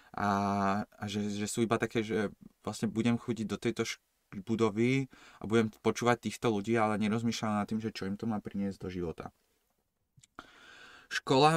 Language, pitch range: Slovak, 100-125 Hz